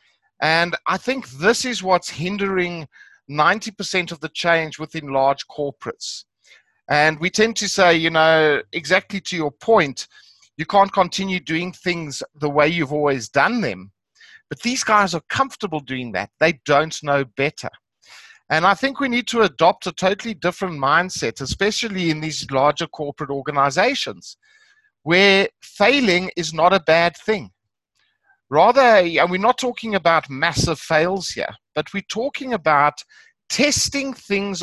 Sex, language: male, English